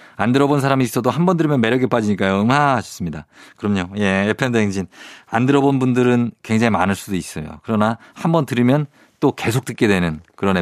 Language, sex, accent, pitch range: Korean, male, native, 100-145 Hz